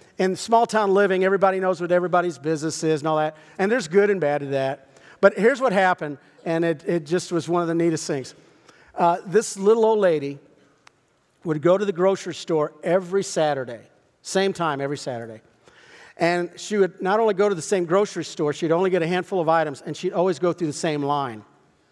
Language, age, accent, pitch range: English, 50-69, American, 145-180 Hz